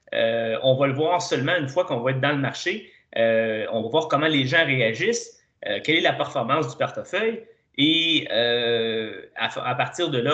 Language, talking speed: French, 210 wpm